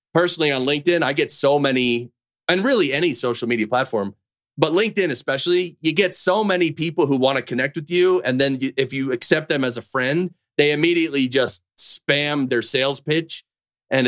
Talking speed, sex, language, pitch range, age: 190 wpm, male, English, 120-175 Hz, 30-49